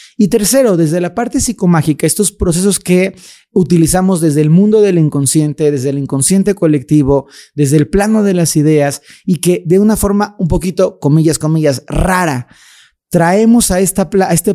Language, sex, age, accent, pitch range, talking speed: Spanish, male, 30-49, Mexican, 150-190 Hz, 160 wpm